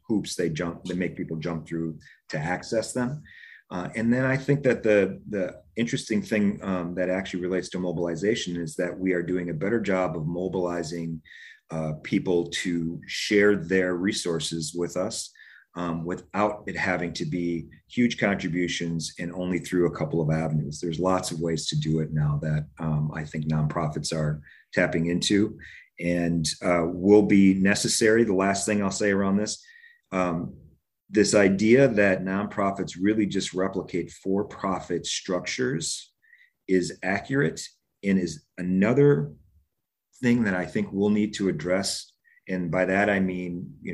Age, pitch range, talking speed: 40-59, 85-100 Hz, 160 wpm